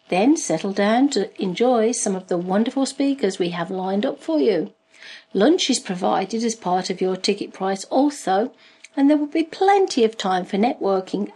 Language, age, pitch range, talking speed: English, 50-69, 195-260 Hz, 185 wpm